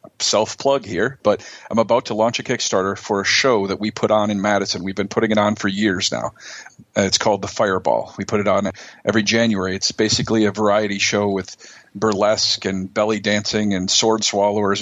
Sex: male